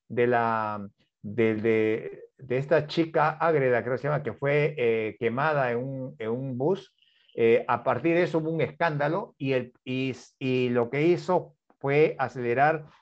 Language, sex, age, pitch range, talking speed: Spanish, male, 50-69, 125-180 Hz, 160 wpm